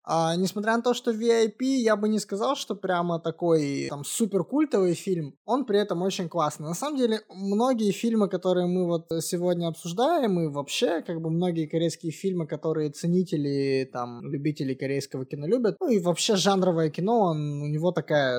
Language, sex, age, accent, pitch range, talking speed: Russian, male, 20-39, native, 145-185 Hz, 175 wpm